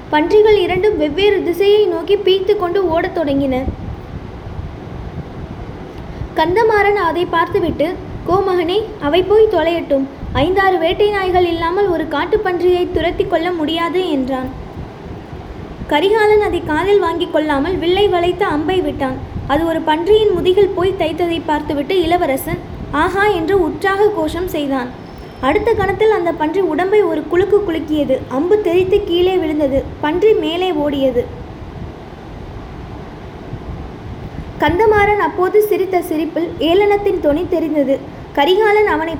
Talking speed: 110 wpm